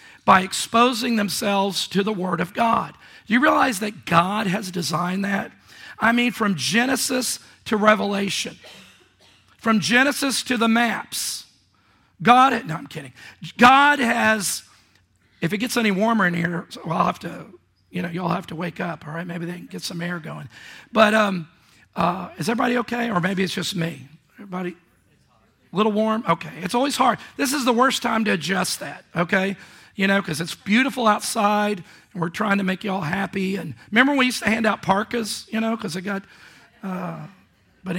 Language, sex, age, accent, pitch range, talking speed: English, male, 40-59, American, 175-230 Hz, 185 wpm